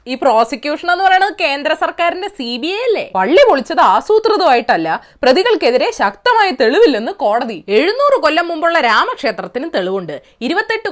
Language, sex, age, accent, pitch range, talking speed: Malayalam, female, 20-39, native, 250-365 Hz, 120 wpm